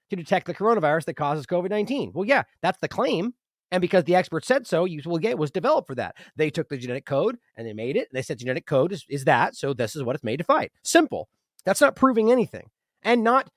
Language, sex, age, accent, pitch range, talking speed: English, male, 30-49, American, 155-230 Hz, 255 wpm